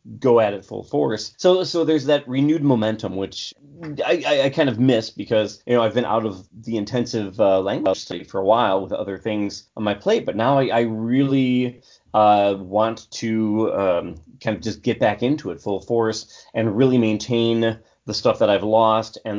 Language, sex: English, male